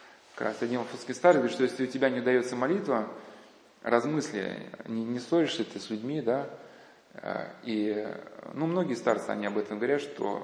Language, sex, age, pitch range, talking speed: Russian, male, 20-39, 120-150 Hz, 165 wpm